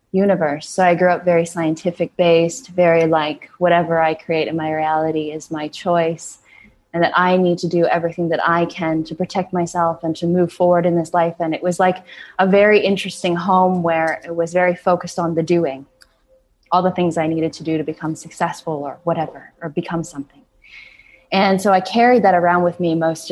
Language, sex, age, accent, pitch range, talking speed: English, female, 20-39, American, 160-180 Hz, 205 wpm